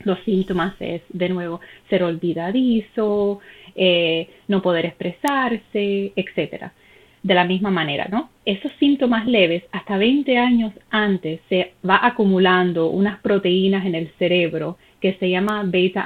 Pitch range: 180-210 Hz